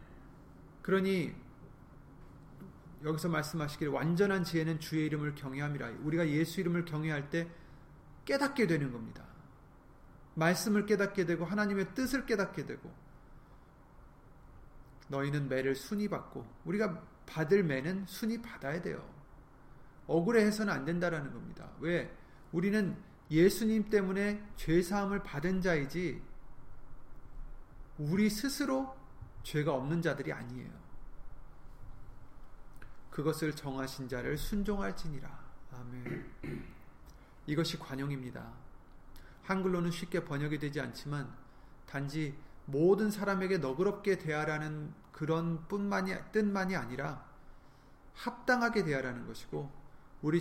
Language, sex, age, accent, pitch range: Korean, male, 30-49, native, 145-200 Hz